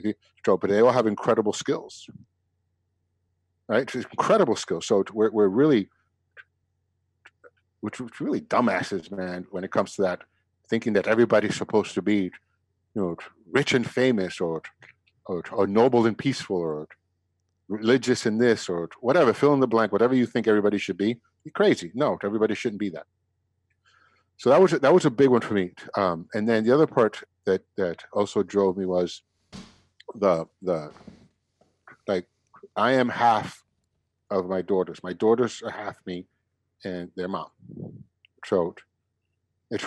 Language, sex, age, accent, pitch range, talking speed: English, male, 50-69, American, 95-120 Hz, 160 wpm